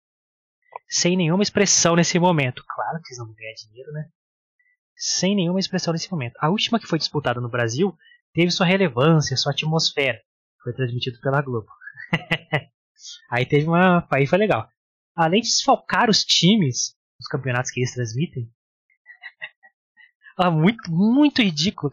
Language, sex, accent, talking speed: Portuguese, male, Brazilian, 140 wpm